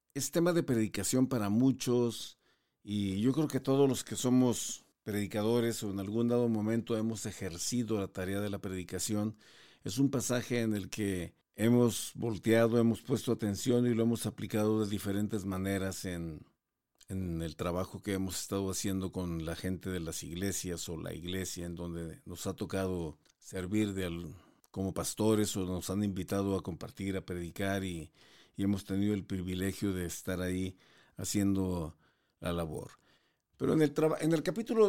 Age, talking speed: 50-69, 170 wpm